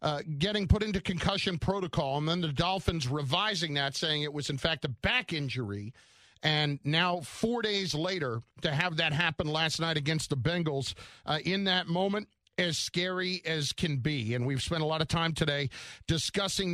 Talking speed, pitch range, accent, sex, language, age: 185 wpm, 150-190 Hz, American, male, English, 50-69